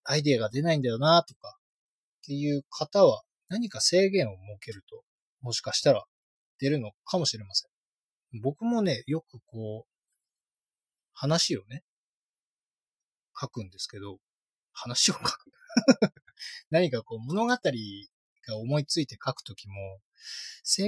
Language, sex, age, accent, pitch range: Japanese, male, 20-39, native, 115-185 Hz